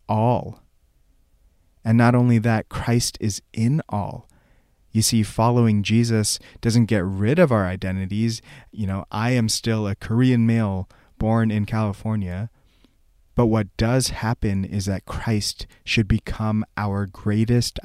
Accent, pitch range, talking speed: American, 95-110 Hz, 140 wpm